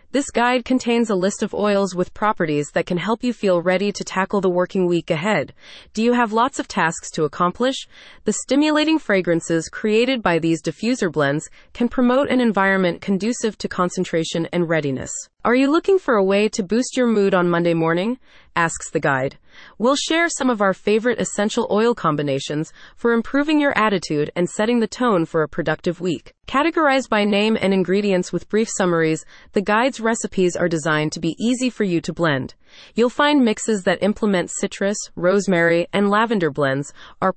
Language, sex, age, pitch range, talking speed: English, female, 30-49, 170-235 Hz, 185 wpm